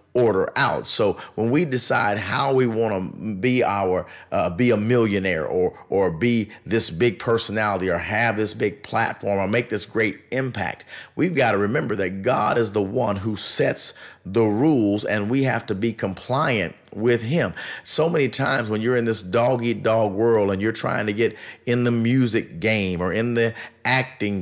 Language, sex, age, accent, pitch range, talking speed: English, male, 40-59, American, 105-130 Hz, 185 wpm